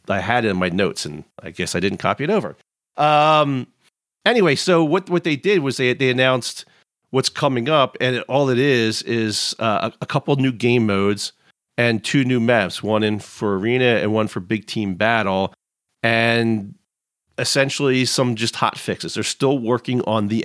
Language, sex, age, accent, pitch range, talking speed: English, male, 40-59, American, 110-140 Hz, 190 wpm